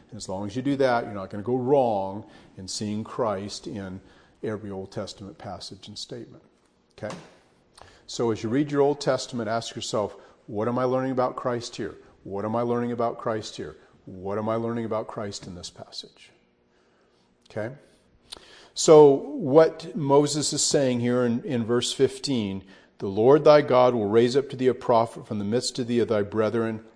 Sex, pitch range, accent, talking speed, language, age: male, 110-135 Hz, American, 190 wpm, English, 40-59